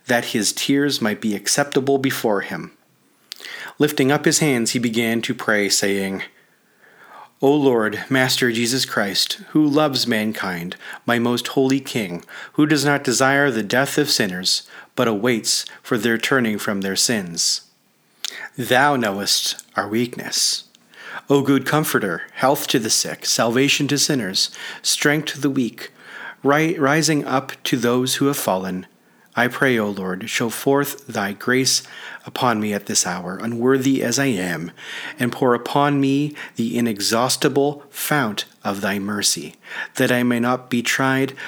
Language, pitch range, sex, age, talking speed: English, 110-140 Hz, male, 40-59, 150 wpm